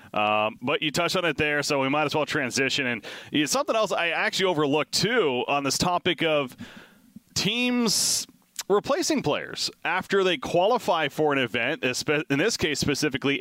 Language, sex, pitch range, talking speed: English, male, 120-155 Hz, 165 wpm